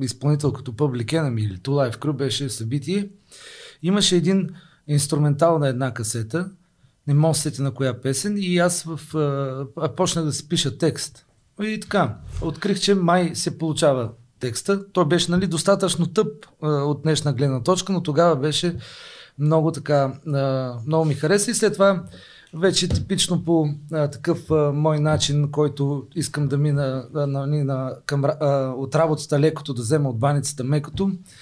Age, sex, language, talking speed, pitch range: 40-59, male, Bulgarian, 155 wpm, 140-175 Hz